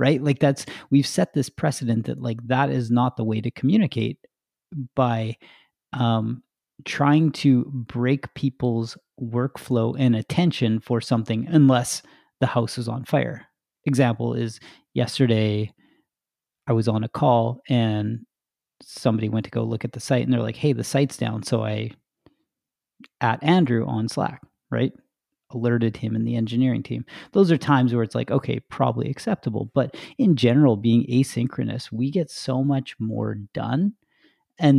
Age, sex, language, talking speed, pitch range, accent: 40-59, male, English, 155 wpm, 115-135 Hz, American